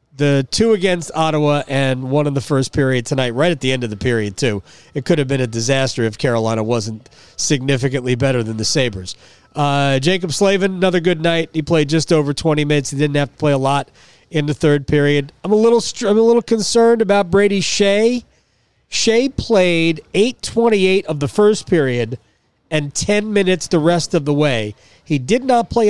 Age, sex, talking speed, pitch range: 40-59, male, 200 wpm, 135-180 Hz